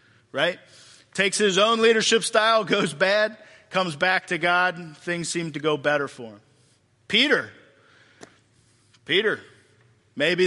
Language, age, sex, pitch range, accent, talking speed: English, 40-59, male, 150-210 Hz, American, 130 wpm